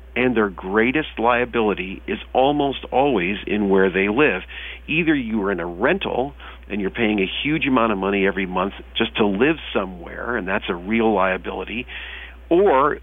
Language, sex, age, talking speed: English, male, 50-69, 170 wpm